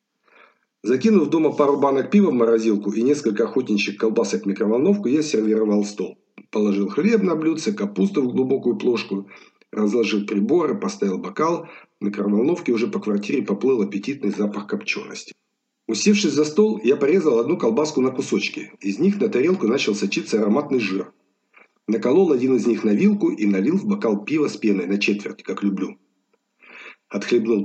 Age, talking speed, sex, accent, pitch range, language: 50-69, 155 wpm, male, native, 100-140 Hz, Russian